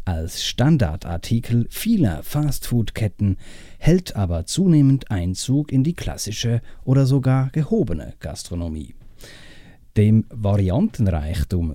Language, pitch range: English, 100-140 Hz